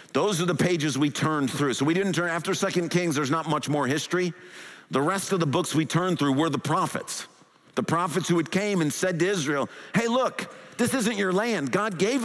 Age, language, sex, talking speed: 50-69, English, male, 230 wpm